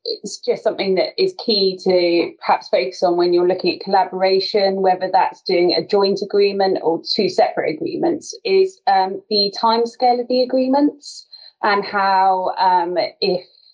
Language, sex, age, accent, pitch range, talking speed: English, female, 30-49, British, 180-235 Hz, 155 wpm